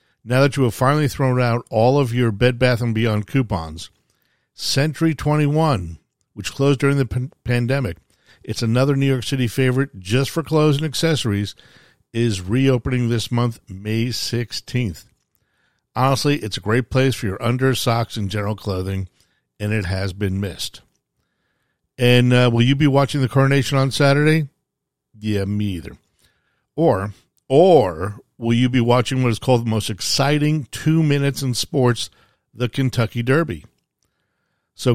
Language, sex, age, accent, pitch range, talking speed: English, male, 50-69, American, 110-135 Hz, 150 wpm